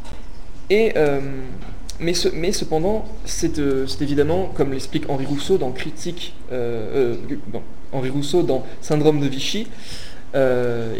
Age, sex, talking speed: 20-39, male, 140 wpm